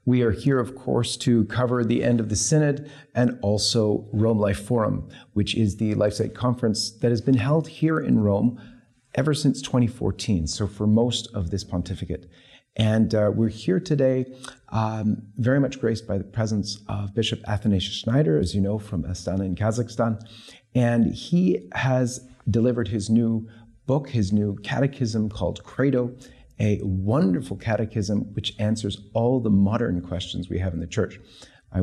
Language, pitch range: English, 95-120 Hz